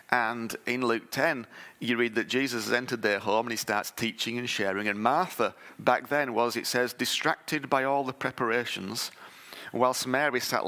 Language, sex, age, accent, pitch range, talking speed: English, male, 30-49, British, 115-140 Hz, 185 wpm